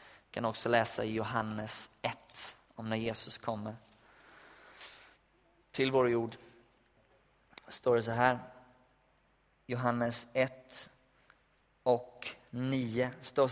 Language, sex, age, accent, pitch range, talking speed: Swedish, male, 20-39, native, 125-140 Hz, 100 wpm